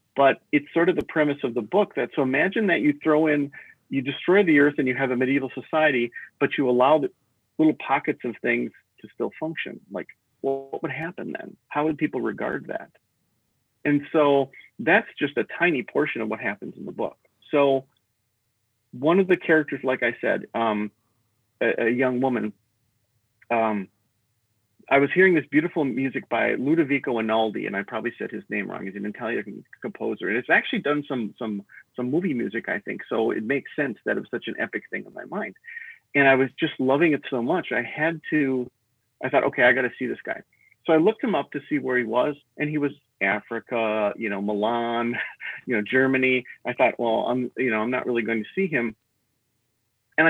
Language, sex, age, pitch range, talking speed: English, male, 40-59, 115-145 Hz, 205 wpm